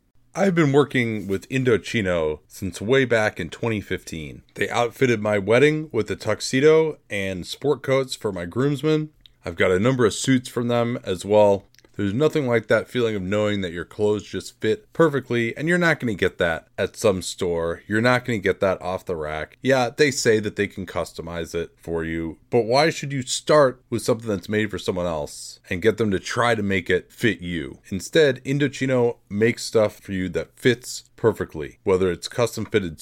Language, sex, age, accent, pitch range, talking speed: English, male, 30-49, American, 100-130 Hz, 200 wpm